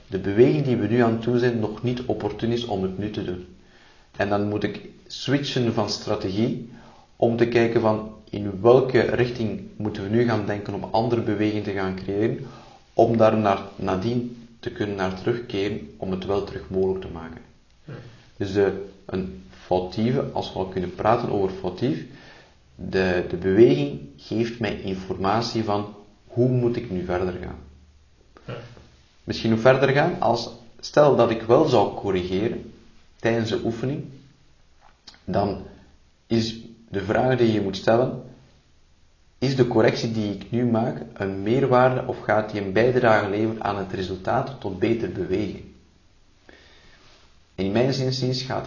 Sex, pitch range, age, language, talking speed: male, 95-120 Hz, 40-59, Dutch, 155 wpm